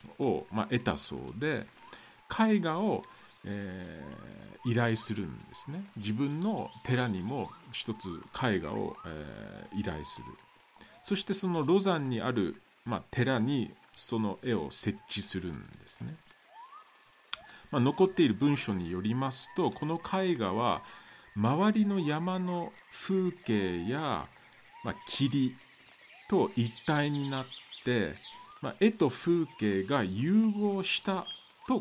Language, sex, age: Japanese, male, 50-69